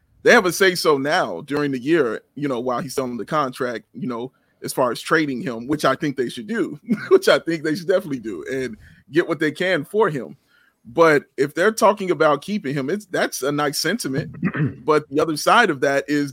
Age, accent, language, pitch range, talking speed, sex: 30-49, American, English, 140-180 Hz, 230 wpm, male